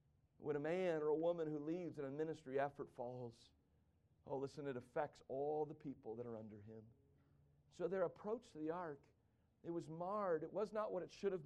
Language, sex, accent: English, male, American